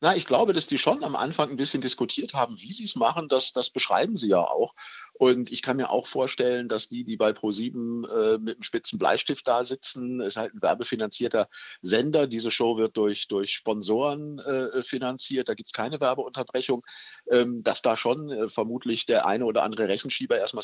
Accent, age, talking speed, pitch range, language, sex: German, 50-69, 205 wpm, 110-130 Hz, German, male